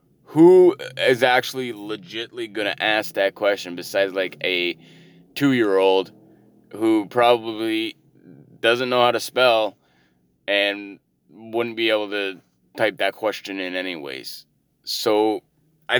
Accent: American